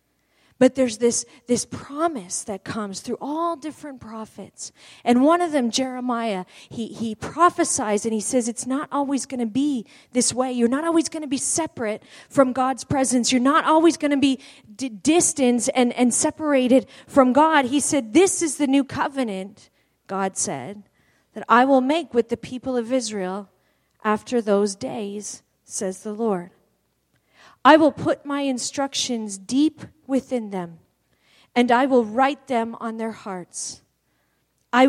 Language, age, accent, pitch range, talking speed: English, 40-59, American, 210-275 Hz, 160 wpm